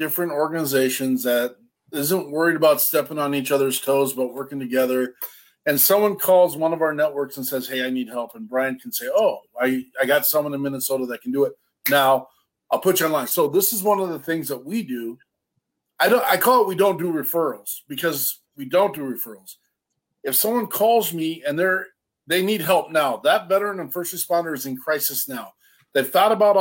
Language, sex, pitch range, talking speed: English, male, 140-195 Hz, 210 wpm